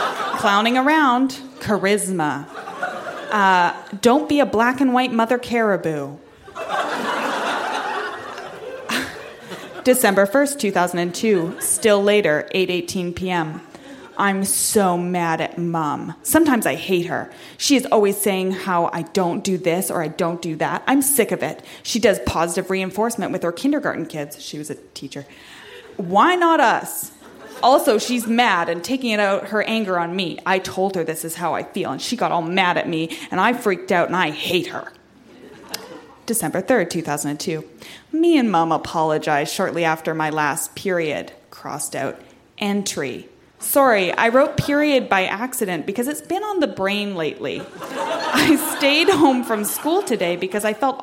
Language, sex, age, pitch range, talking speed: English, female, 20-39, 170-255 Hz, 160 wpm